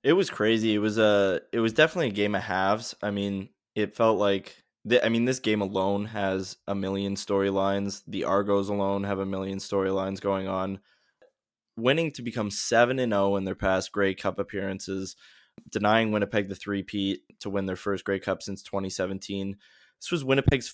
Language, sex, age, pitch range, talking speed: English, male, 20-39, 95-105 Hz, 180 wpm